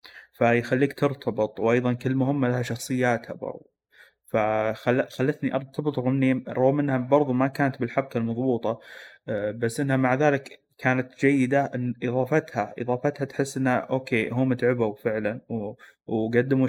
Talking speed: 120 wpm